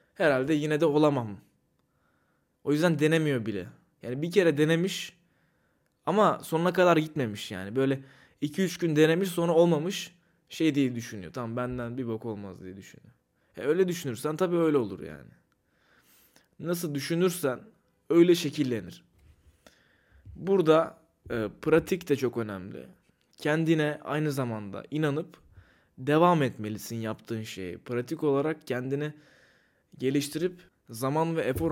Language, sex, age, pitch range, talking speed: Turkish, male, 20-39, 125-165 Hz, 125 wpm